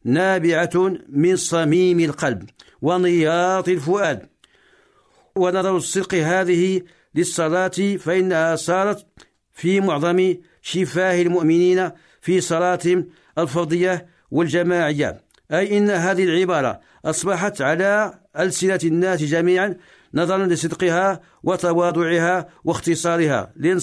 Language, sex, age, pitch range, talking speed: Arabic, male, 50-69, 170-185 Hz, 85 wpm